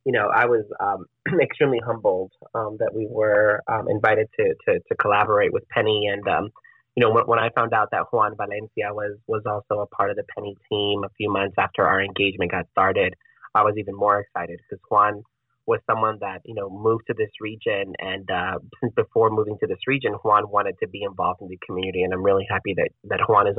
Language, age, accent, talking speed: English, 20-39, American, 225 wpm